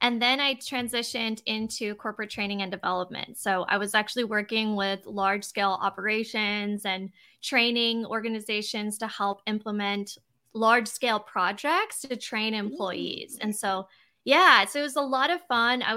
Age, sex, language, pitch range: 20-39, female, English, 205-245 Hz